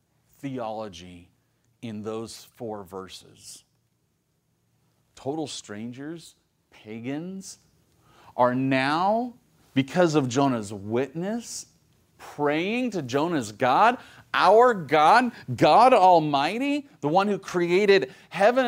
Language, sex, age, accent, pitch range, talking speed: English, male, 40-59, American, 120-185 Hz, 85 wpm